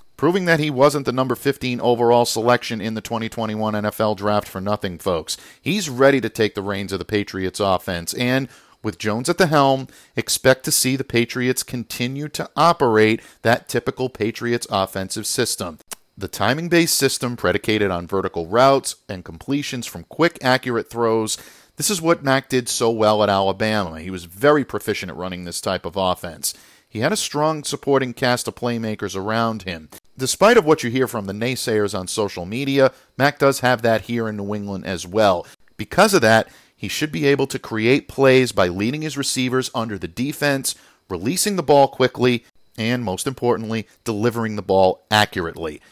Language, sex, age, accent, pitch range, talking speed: English, male, 50-69, American, 105-135 Hz, 180 wpm